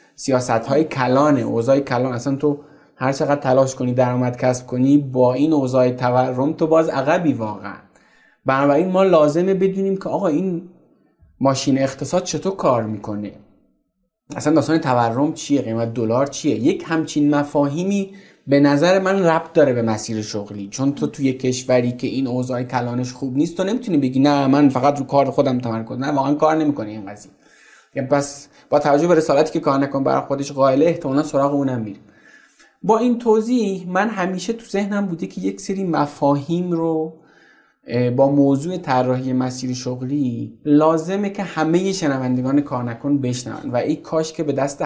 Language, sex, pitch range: Persian, male, 125-160 Hz